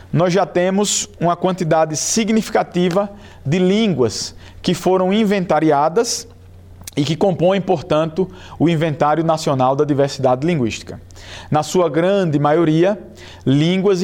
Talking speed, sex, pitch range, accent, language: 110 wpm, male, 130-180 Hz, Brazilian, Portuguese